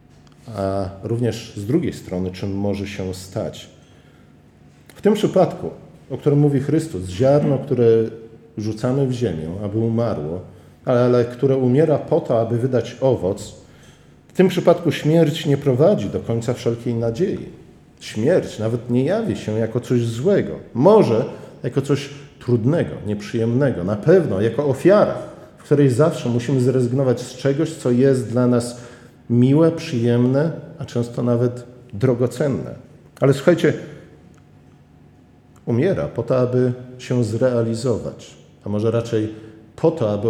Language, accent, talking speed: Polish, native, 135 wpm